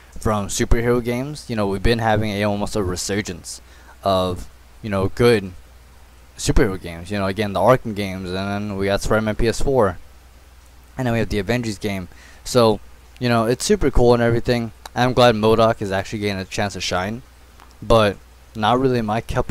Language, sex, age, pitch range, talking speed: English, male, 20-39, 90-120 Hz, 190 wpm